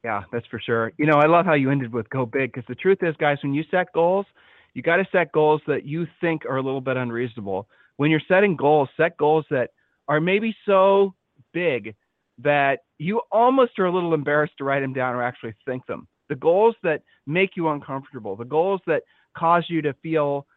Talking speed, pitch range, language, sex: 220 wpm, 130-160 Hz, English, male